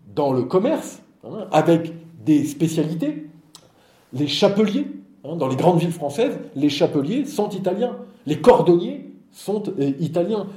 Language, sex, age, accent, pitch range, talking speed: Italian, male, 50-69, French, 135-180 Hz, 130 wpm